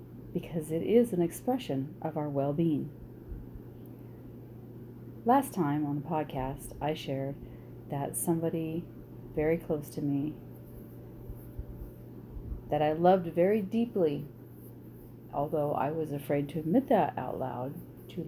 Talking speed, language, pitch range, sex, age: 120 wpm, English, 130-165 Hz, female, 40-59